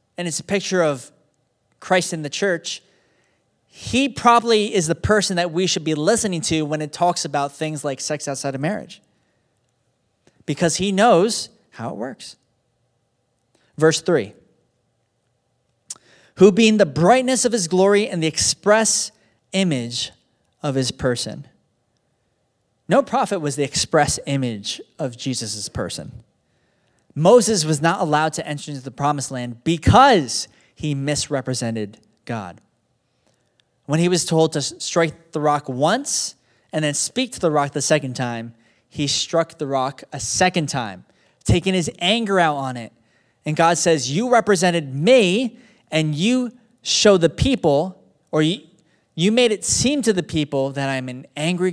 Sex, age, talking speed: male, 20-39, 150 wpm